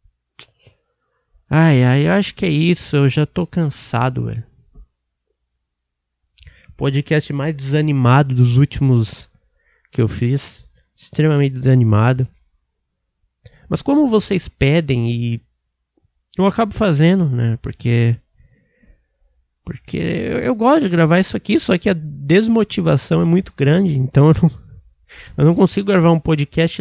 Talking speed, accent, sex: 120 wpm, Brazilian, male